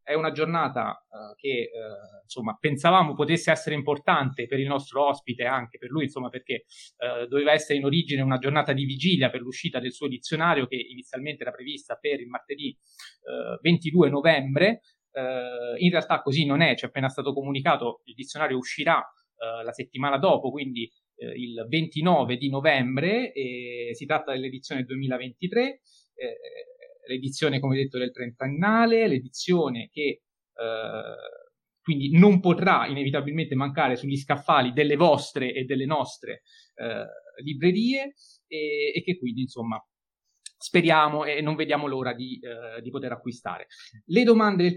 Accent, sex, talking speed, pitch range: native, male, 155 wpm, 130-175 Hz